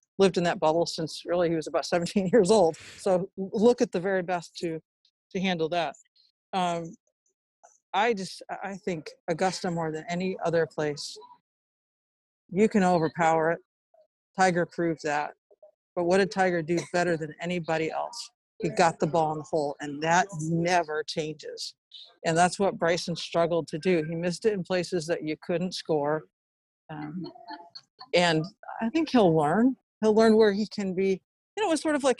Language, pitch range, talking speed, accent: English, 165-205 Hz, 175 wpm, American